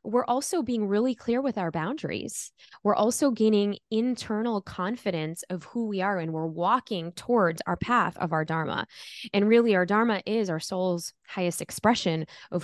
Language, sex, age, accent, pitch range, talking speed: English, female, 20-39, American, 175-230 Hz, 170 wpm